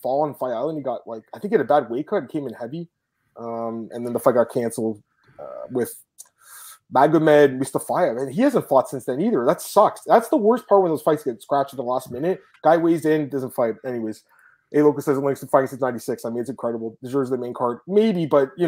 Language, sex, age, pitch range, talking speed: English, male, 20-39, 125-160 Hz, 250 wpm